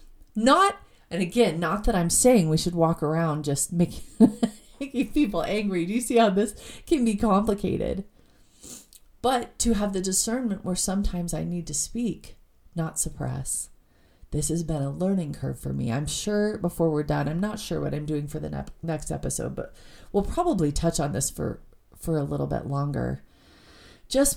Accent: American